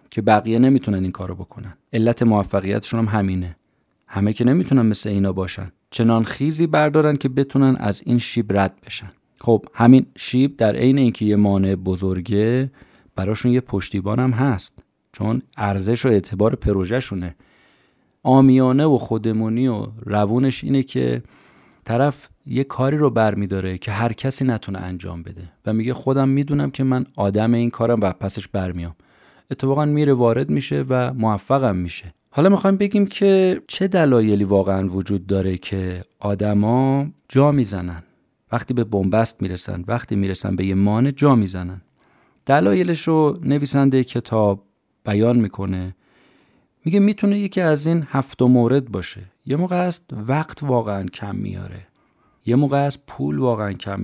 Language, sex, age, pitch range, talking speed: Persian, male, 30-49, 95-135 Hz, 150 wpm